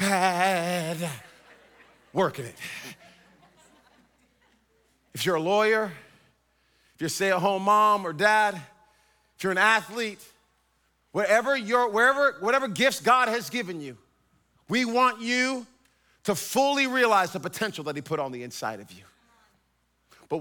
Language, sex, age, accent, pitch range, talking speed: English, male, 40-59, American, 150-215 Hz, 125 wpm